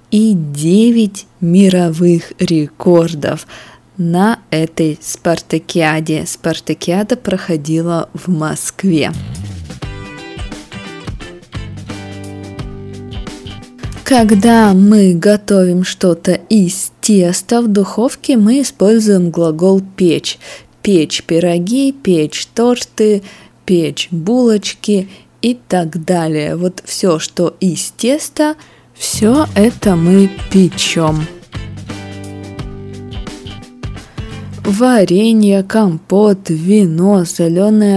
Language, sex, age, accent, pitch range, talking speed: Russian, female, 20-39, native, 160-205 Hz, 75 wpm